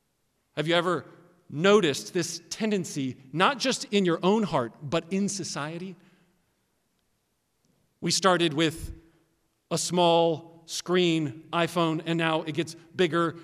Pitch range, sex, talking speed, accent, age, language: 145-185 Hz, male, 120 wpm, American, 40-59, English